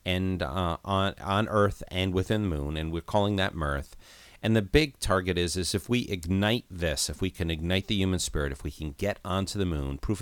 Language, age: English, 40-59